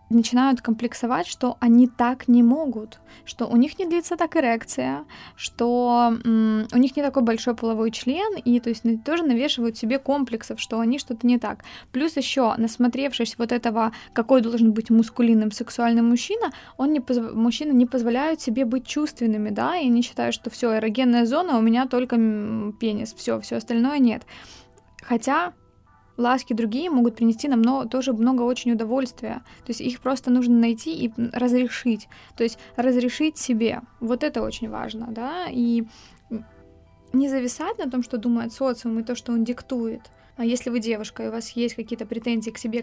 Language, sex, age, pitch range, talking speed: Ukrainian, female, 20-39, 230-260 Hz, 175 wpm